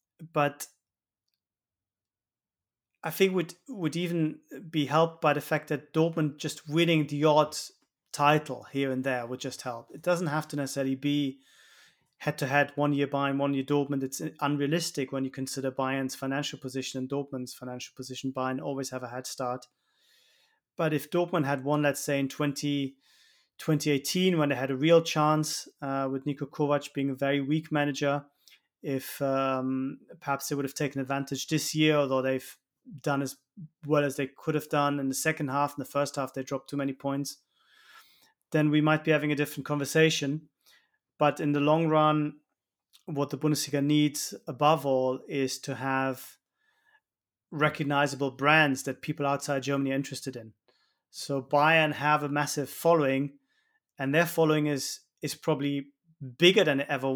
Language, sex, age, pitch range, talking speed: English, male, 30-49, 135-155 Hz, 165 wpm